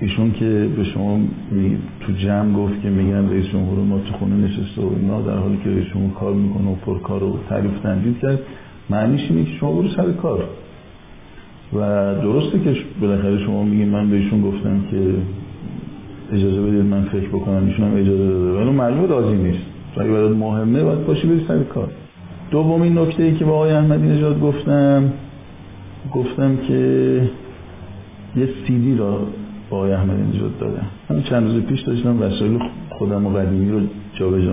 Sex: male